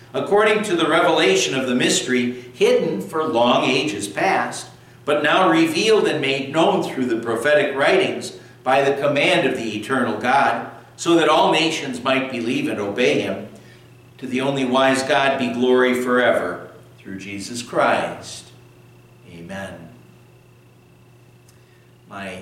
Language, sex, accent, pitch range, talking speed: English, male, American, 115-155 Hz, 135 wpm